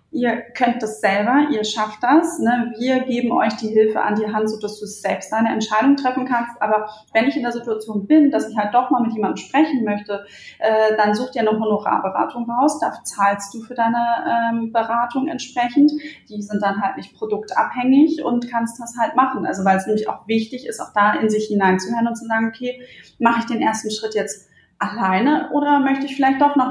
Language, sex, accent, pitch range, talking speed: German, female, German, 210-250 Hz, 210 wpm